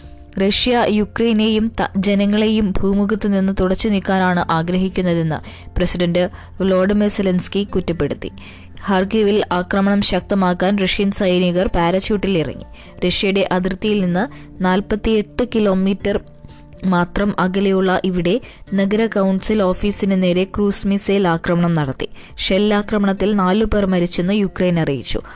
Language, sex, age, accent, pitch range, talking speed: Malayalam, female, 20-39, native, 180-205 Hz, 95 wpm